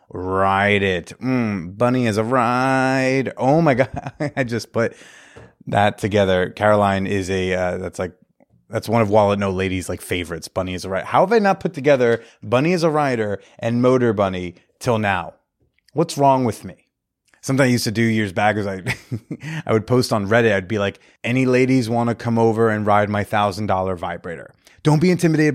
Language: English